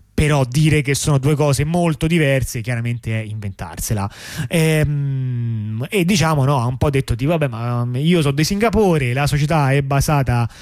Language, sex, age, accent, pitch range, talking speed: Italian, male, 30-49, native, 120-160 Hz, 170 wpm